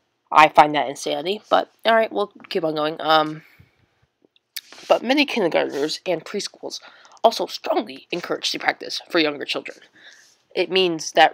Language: English